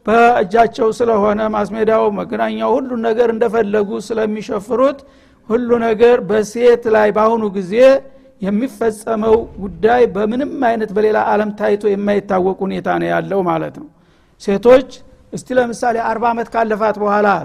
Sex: male